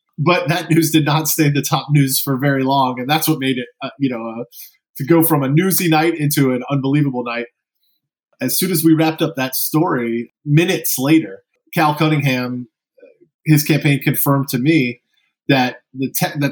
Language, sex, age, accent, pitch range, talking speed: English, male, 20-39, American, 125-150 Hz, 190 wpm